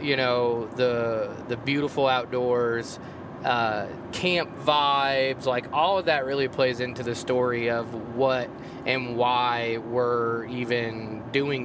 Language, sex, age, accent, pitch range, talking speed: English, male, 20-39, American, 120-140 Hz, 130 wpm